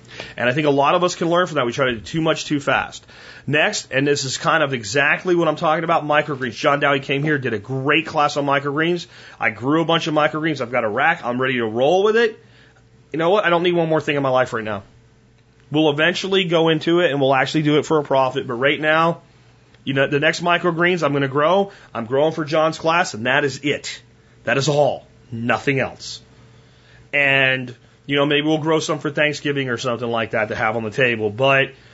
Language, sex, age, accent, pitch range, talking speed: English, male, 30-49, American, 125-155 Hz, 240 wpm